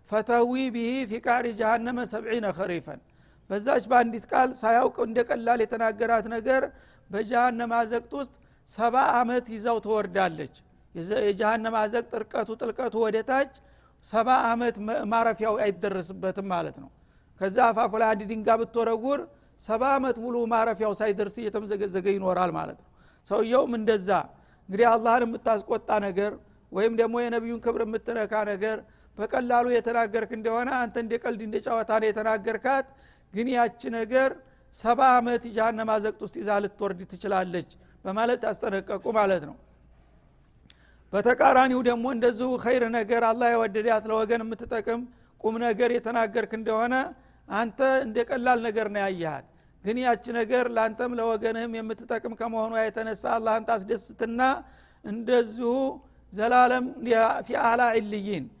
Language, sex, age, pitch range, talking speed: Amharic, male, 60-79, 215-240 Hz, 110 wpm